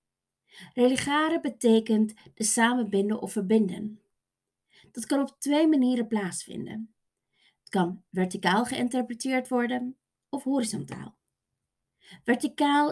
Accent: Dutch